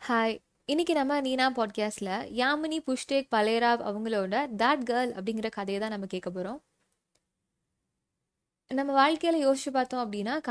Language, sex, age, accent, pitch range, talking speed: Tamil, female, 20-39, native, 210-265 Hz, 95 wpm